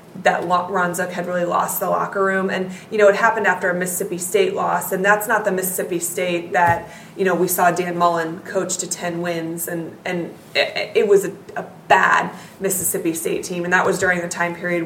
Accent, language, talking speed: American, English, 220 wpm